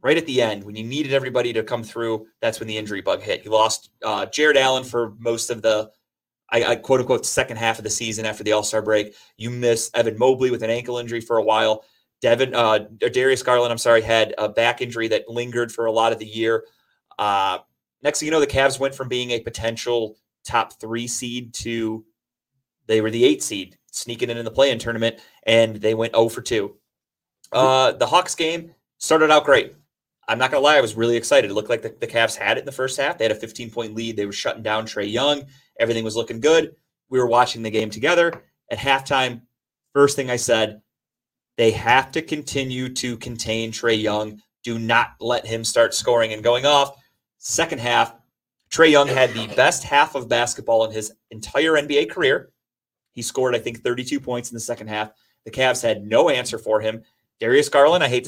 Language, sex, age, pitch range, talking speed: English, male, 30-49, 110-130 Hz, 215 wpm